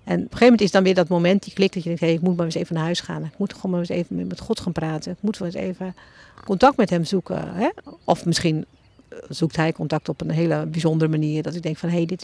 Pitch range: 175-210 Hz